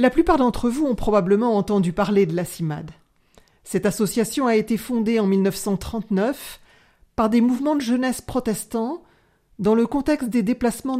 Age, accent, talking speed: 40-59, French, 160 wpm